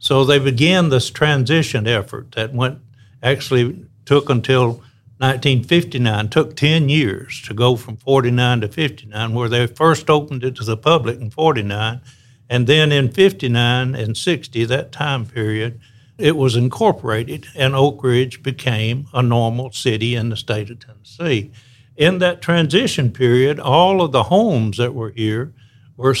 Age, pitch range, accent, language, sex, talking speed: 60-79, 120-140 Hz, American, English, male, 155 wpm